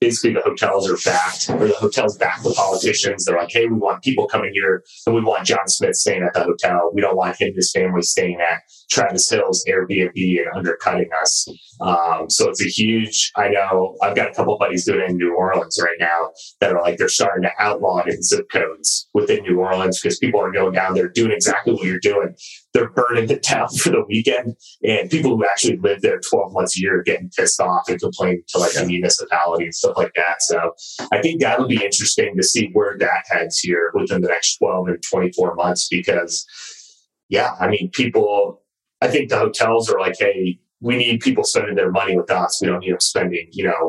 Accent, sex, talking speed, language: American, male, 225 wpm, English